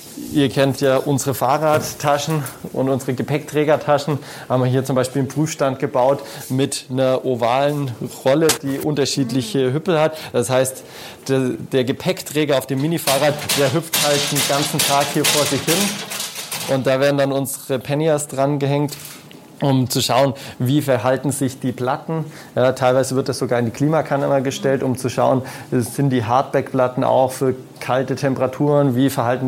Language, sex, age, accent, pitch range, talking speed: German, male, 20-39, German, 125-145 Hz, 160 wpm